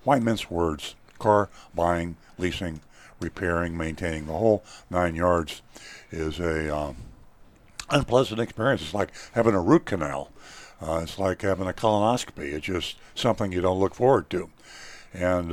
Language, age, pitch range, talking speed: English, 60-79, 85-110 Hz, 145 wpm